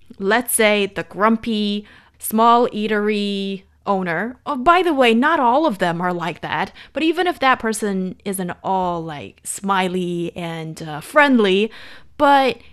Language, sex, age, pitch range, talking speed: English, female, 20-39, 180-245 Hz, 140 wpm